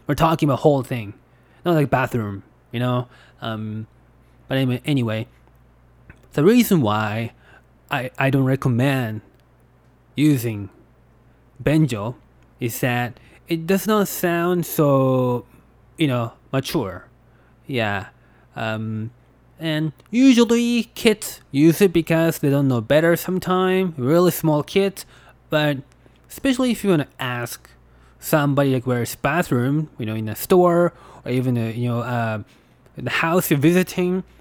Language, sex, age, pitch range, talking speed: English, male, 20-39, 120-155 Hz, 130 wpm